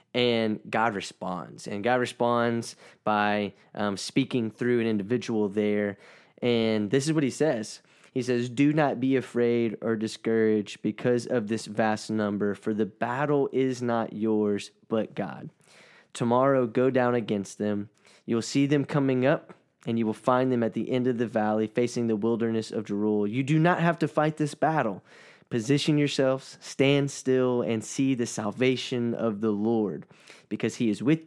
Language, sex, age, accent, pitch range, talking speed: English, male, 10-29, American, 110-130 Hz, 175 wpm